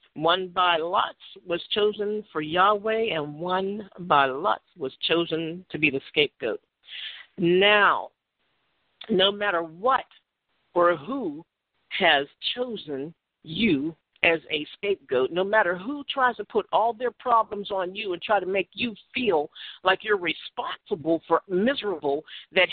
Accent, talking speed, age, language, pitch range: American, 135 wpm, 50-69, English, 170-250 Hz